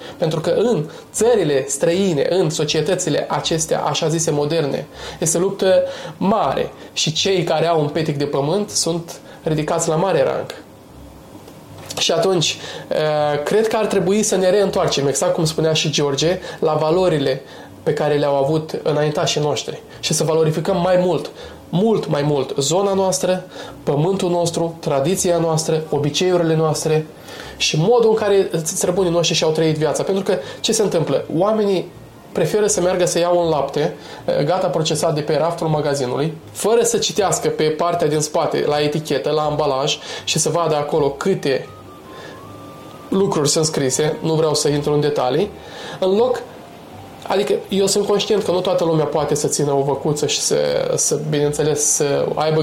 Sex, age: male, 20-39